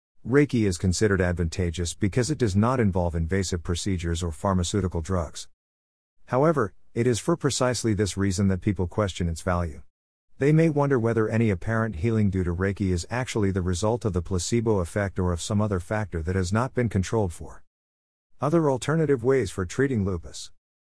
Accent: American